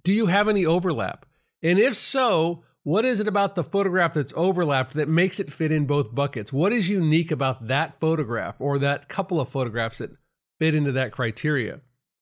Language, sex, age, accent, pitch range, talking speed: English, male, 50-69, American, 135-175 Hz, 190 wpm